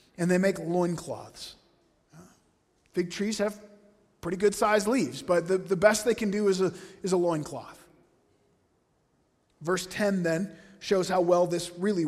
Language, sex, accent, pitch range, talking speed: English, male, American, 165-200 Hz, 150 wpm